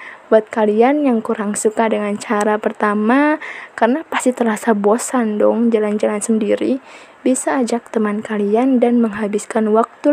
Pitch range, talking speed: 220-250 Hz, 130 wpm